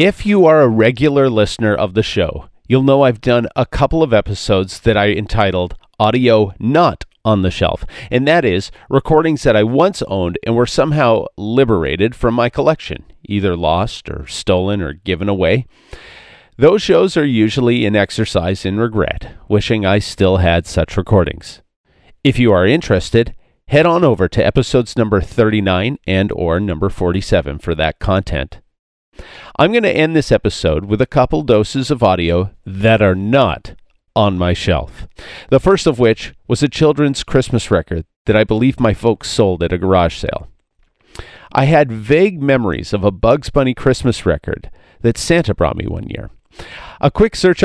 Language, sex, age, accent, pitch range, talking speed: English, male, 40-59, American, 95-130 Hz, 170 wpm